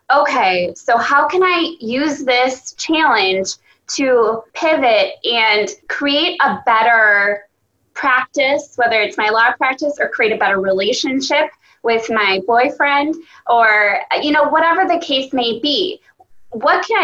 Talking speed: 135 wpm